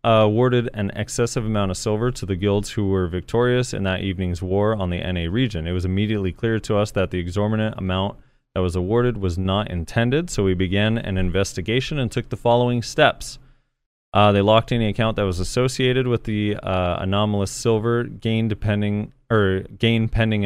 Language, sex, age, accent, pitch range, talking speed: English, male, 30-49, American, 95-120 Hz, 180 wpm